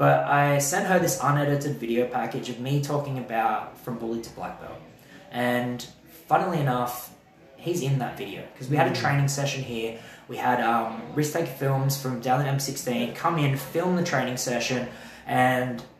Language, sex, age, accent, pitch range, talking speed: English, male, 20-39, Australian, 120-150 Hz, 175 wpm